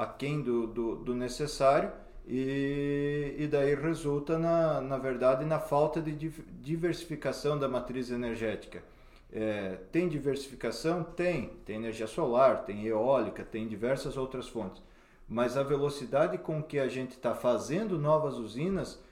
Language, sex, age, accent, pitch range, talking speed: Portuguese, male, 40-59, Brazilian, 120-155 Hz, 135 wpm